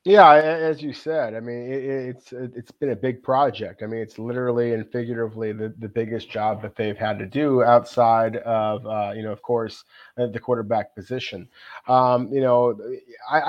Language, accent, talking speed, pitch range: English, American, 180 wpm, 115-140 Hz